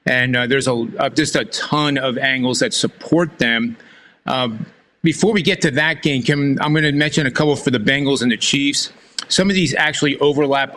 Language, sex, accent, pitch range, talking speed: English, male, American, 140-175 Hz, 210 wpm